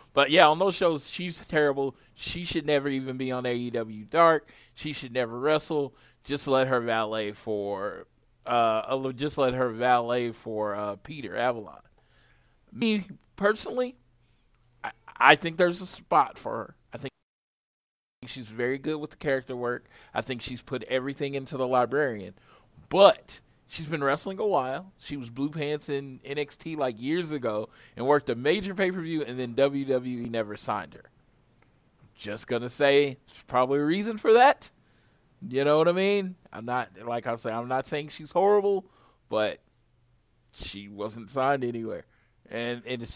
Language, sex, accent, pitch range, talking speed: English, male, American, 120-160 Hz, 165 wpm